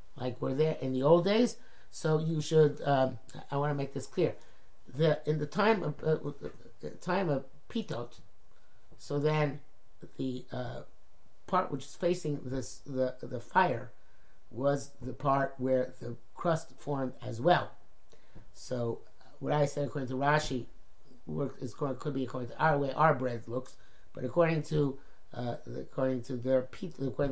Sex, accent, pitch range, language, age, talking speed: male, American, 125-155 Hz, English, 50-69, 160 wpm